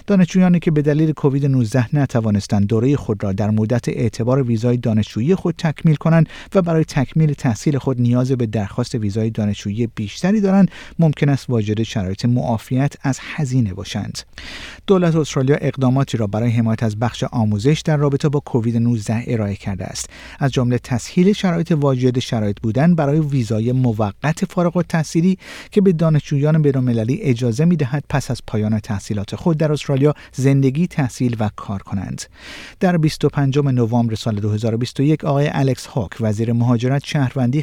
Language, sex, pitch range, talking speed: Persian, male, 115-155 Hz, 155 wpm